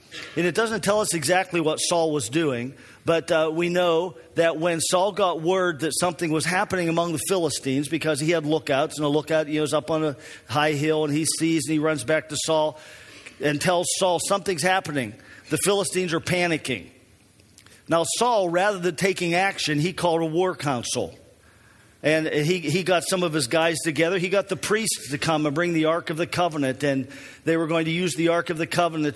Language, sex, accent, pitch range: English, male, American, 150-175 Hz